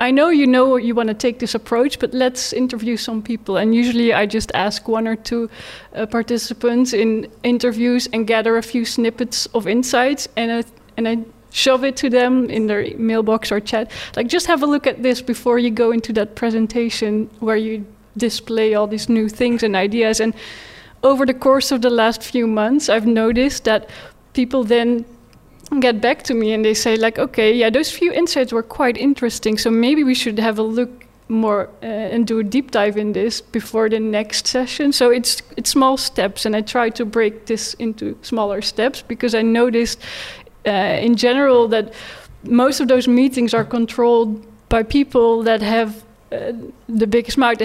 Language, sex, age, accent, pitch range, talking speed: English, female, 20-39, Dutch, 225-255 Hz, 195 wpm